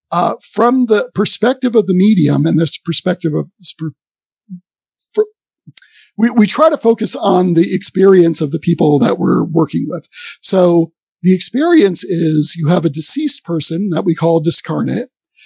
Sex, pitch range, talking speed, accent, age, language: male, 170-230 Hz, 155 wpm, American, 50-69, English